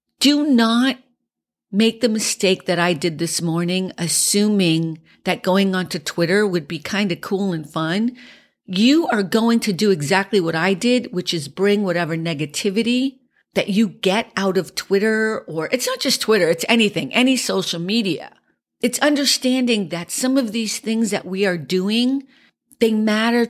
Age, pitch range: 50-69, 180-230 Hz